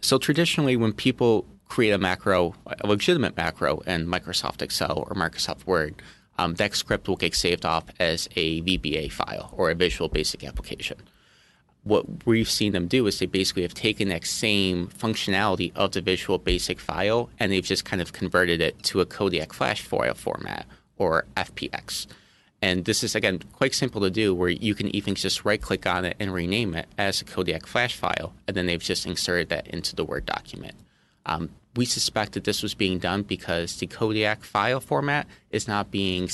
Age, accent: 30-49, American